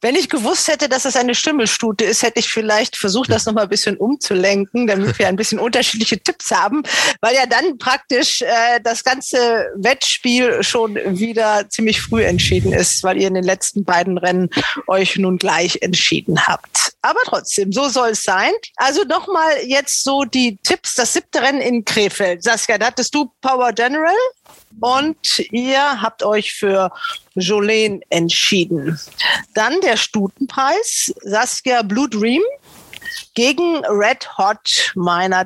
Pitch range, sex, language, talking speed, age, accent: 195-270 Hz, female, German, 155 wpm, 40-59, German